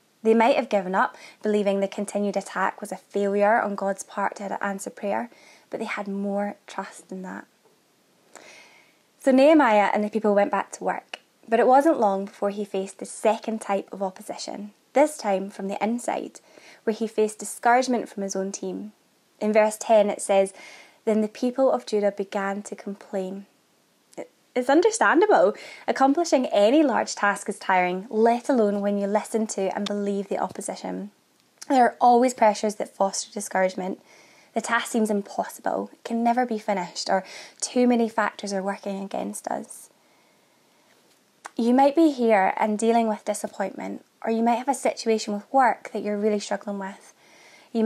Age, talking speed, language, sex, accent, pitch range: 20-39, 170 wpm, English, female, British, 200-235 Hz